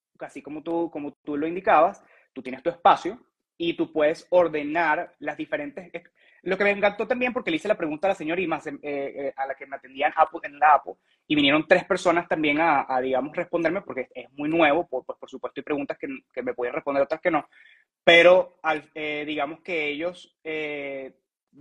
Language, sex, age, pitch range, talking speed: Spanish, male, 20-39, 150-190 Hz, 215 wpm